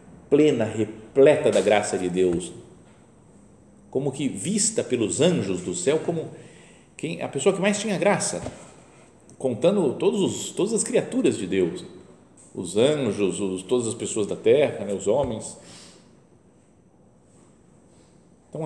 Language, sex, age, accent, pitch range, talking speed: Portuguese, male, 50-69, Brazilian, 110-175 Hz, 130 wpm